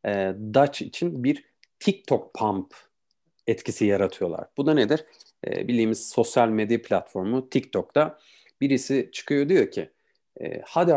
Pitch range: 110-155 Hz